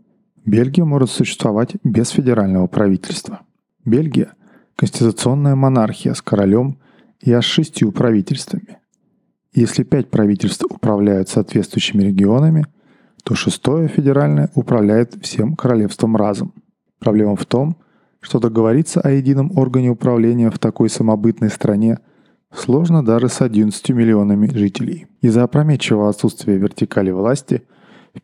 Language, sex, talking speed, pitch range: Russian, male, 115 wpm, 105-150 Hz